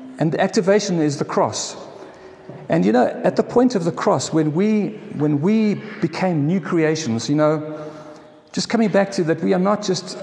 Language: English